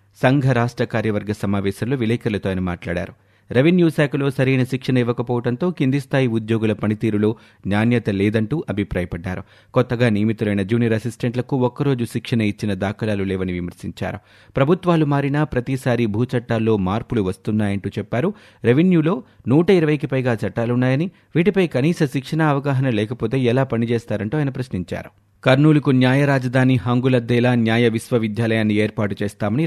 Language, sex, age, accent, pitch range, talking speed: Telugu, male, 30-49, native, 100-130 Hz, 115 wpm